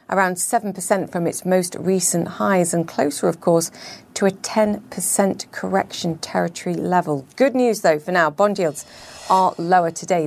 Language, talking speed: English, 160 wpm